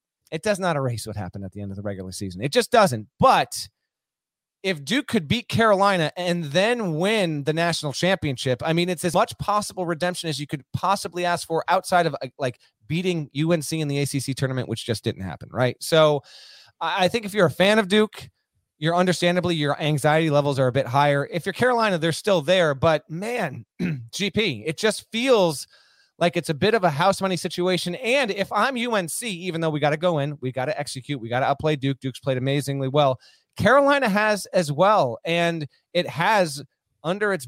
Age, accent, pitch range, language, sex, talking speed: 30-49, American, 140-190 Hz, English, male, 205 wpm